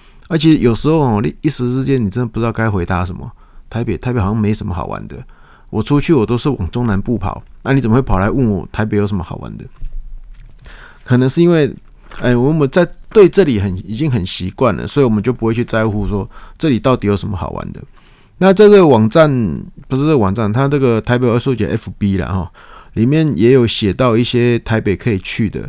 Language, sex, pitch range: Chinese, male, 105-130 Hz